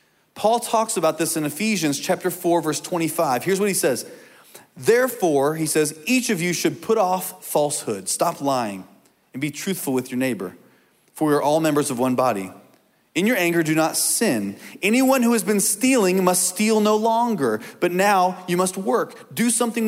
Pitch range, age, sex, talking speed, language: 150-200 Hz, 30-49, male, 185 wpm, English